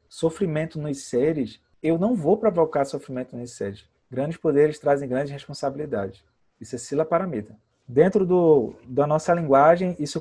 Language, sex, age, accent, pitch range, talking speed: Portuguese, male, 20-39, Brazilian, 135-175 Hz, 145 wpm